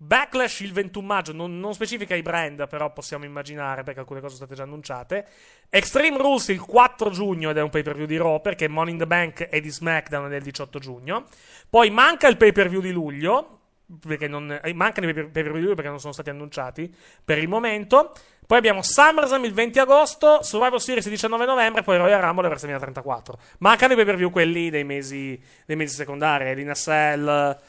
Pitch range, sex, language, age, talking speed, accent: 145-200 Hz, male, Italian, 30-49, 215 wpm, native